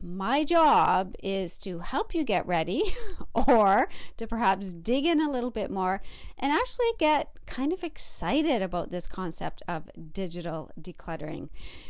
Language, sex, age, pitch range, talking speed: English, female, 40-59, 180-260 Hz, 145 wpm